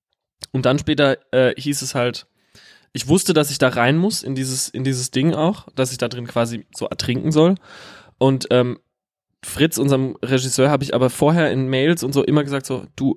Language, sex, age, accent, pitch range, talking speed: German, male, 20-39, German, 115-135 Hz, 205 wpm